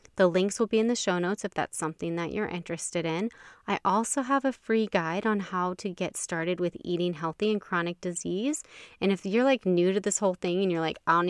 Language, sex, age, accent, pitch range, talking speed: English, female, 20-39, American, 170-215 Hz, 245 wpm